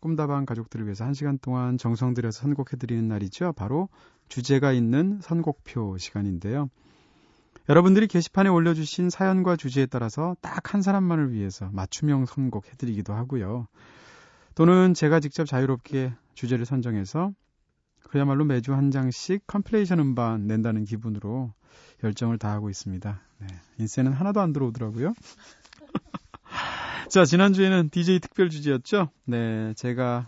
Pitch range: 110-165 Hz